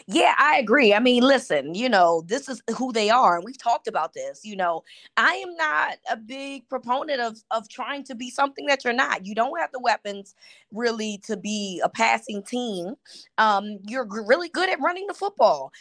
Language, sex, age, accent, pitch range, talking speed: English, female, 20-39, American, 205-255 Hz, 205 wpm